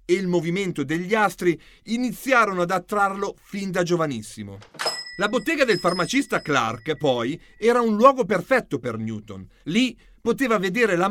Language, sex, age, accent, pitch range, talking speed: Italian, male, 40-59, native, 150-230 Hz, 145 wpm